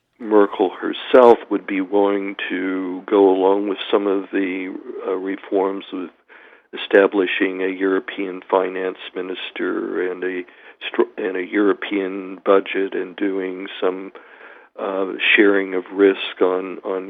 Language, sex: English, male